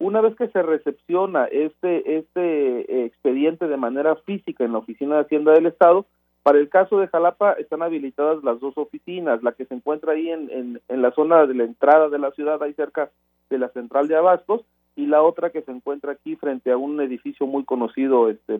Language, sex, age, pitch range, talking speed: Spanish, male, 40-59, 135-175 Hz, 210 wpm